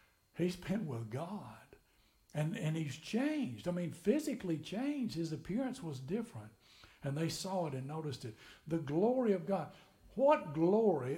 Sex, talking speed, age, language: male, 155 wpm, 60-79, English